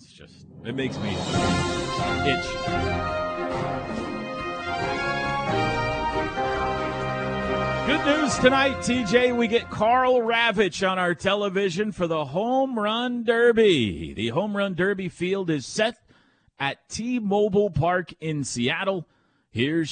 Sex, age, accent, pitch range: male, 40-59, American, 125-205 Hz